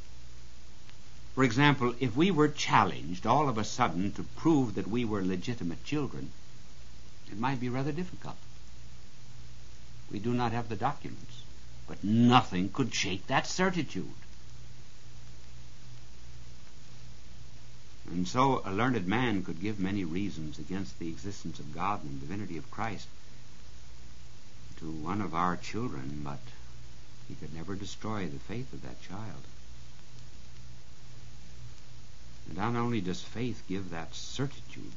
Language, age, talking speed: English, 60-79, 130 wpm